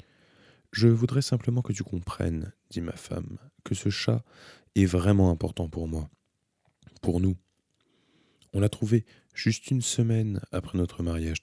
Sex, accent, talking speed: male, French, 145 wpm